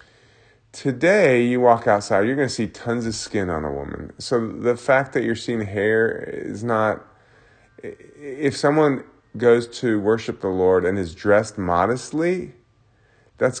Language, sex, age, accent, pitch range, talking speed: English, male, 30-49, American, 95-120 Hz, 155 wpm